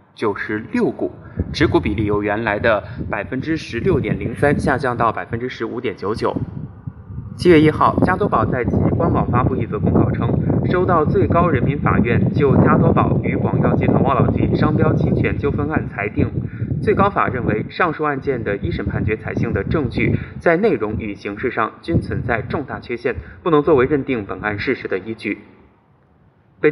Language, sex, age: Chinese, male, 20-39